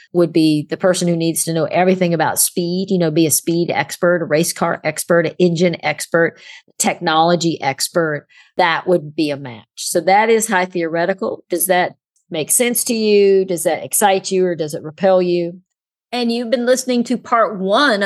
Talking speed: 195 wpm